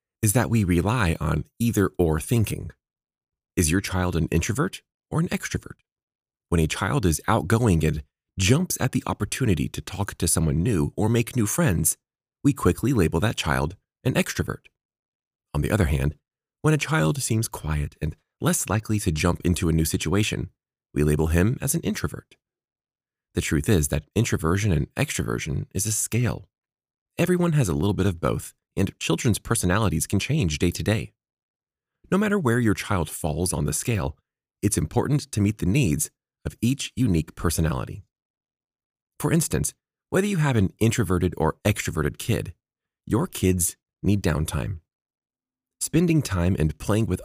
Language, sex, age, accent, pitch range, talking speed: English, male, 30-49, American, 85-120 Hz, 160 wpm